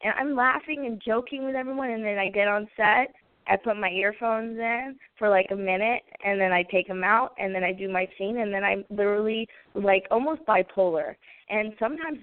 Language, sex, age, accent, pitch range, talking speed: English, female, 20-39, American, 195-250 Hz, 210 wpm